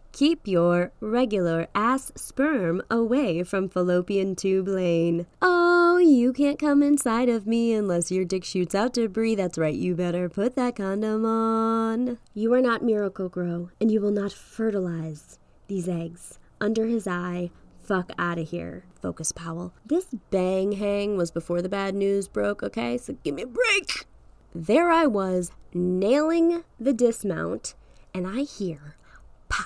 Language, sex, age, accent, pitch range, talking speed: English, female, 20-39, American, 180-265 Hz, 155 wpm